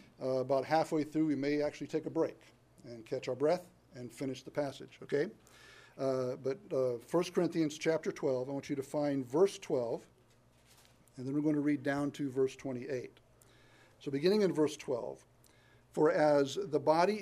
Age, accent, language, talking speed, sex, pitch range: 50-69, American, English, 180 wpm, male, 130-150 Hz